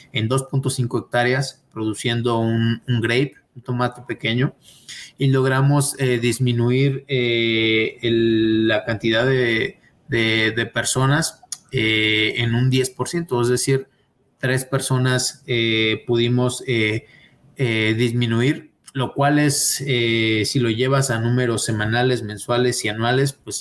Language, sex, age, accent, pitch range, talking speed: Spanish, male, 30-49, Mexican, 110-130 Hz, 125 wpm